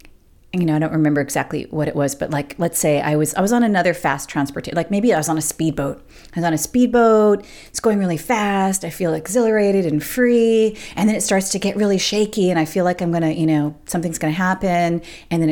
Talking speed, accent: 245 wpm, American